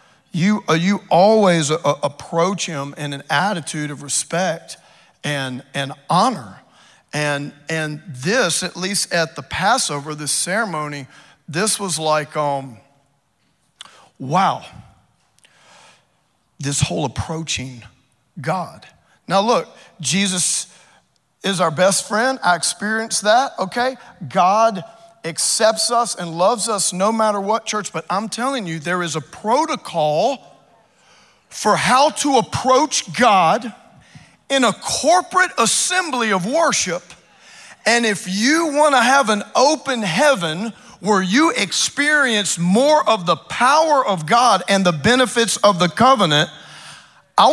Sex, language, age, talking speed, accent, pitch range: male, English, 40-59, 120 wpm, American, 155-235 Hz